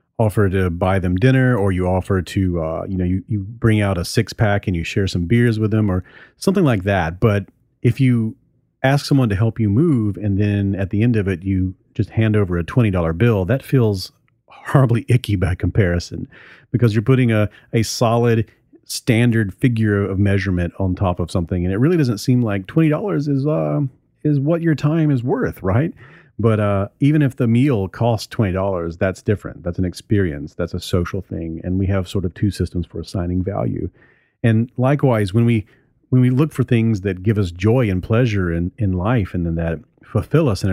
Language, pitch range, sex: English, 95-125 Hz, male